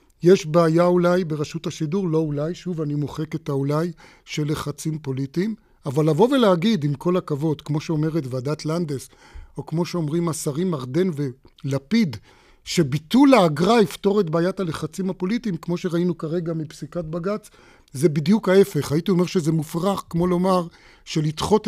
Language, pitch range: Hebrew, 150-180 Hz